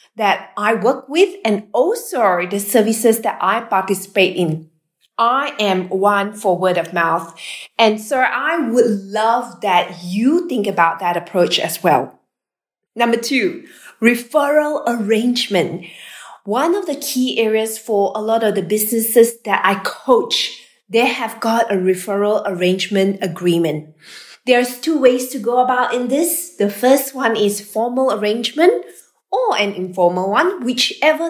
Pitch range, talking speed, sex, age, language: 190-250 Hz, 145 wpm, female, 20-39, English